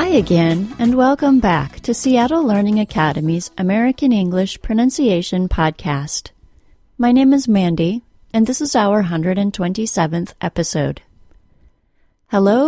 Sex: female